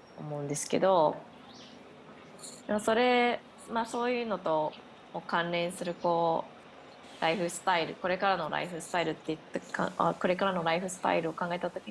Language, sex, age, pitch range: Japanese, female, 20-39, 150-195 Hz